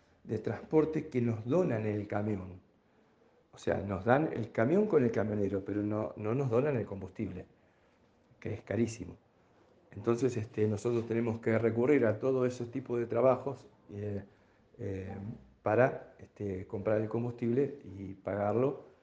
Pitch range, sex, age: 100-120 Hz, male, 50-69